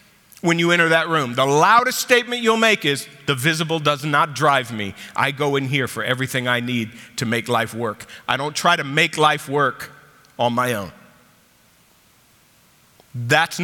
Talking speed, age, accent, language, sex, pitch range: 175 wpm, 50-69, American, English, male, 110-140 Hz